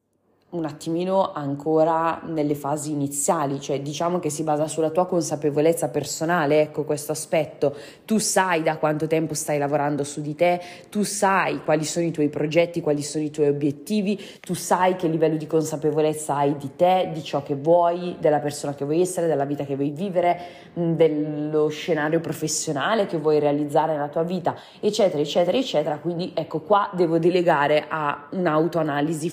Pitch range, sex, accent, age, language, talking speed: 150-175 Hz, female, native, 20-39, Italian, 170 wpm